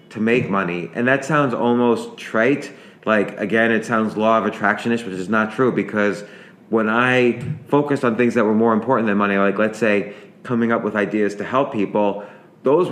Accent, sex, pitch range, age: American, male, 105-120 Hz, 30-49